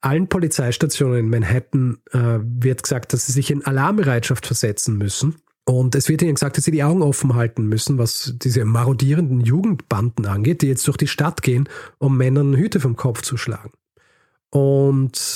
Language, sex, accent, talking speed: German, male, German, 175 wpm